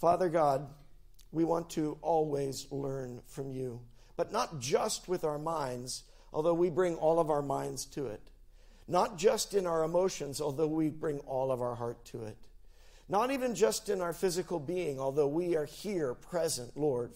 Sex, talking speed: male, 180 wpm